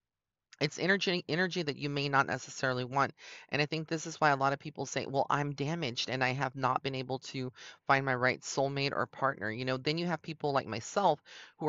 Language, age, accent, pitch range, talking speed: English, 30-49, American, 125-145 Hz, 230 wpm